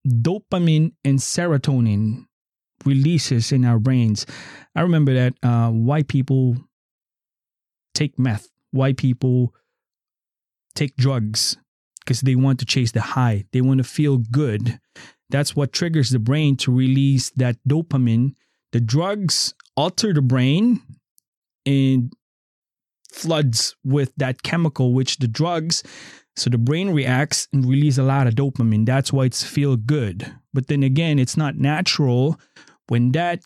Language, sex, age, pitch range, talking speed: English, male, 20-39, 125-150 Hz, 135 wpm